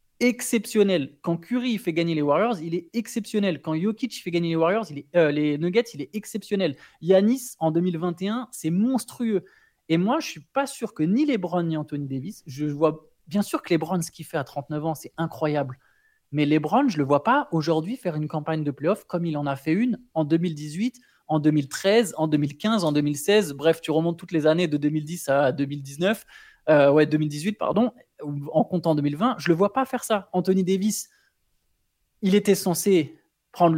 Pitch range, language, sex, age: 150-210 Hz, French, male, 20-39